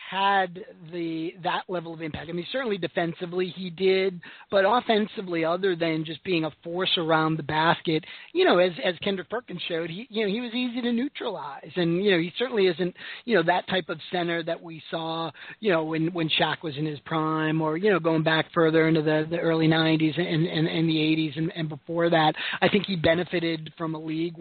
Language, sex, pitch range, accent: English, male, 160-195 Hz, American